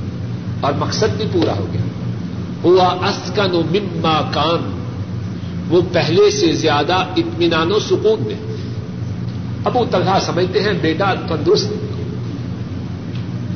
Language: Urdu